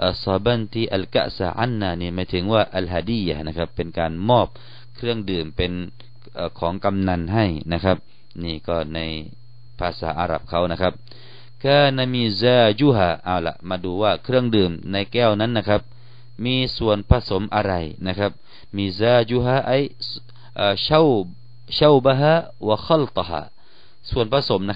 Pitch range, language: 95-120 Hz, Thai